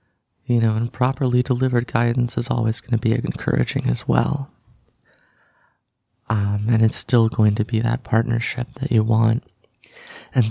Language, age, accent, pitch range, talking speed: English, 30-49, American, 110-120 Hz, 155 wpm